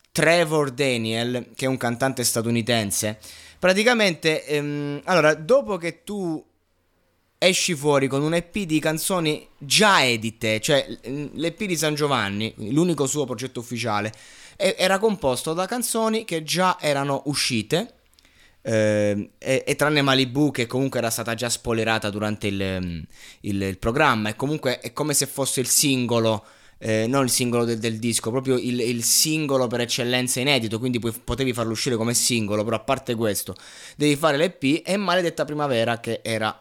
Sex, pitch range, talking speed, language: male, 110-155 Hz, 155 wpm, Italian